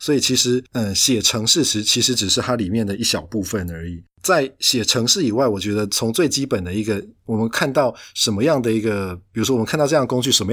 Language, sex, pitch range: Chinese, male, 100-120 Hz